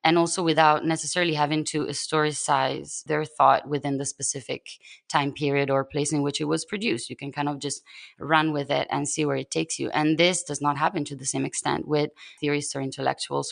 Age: 20-39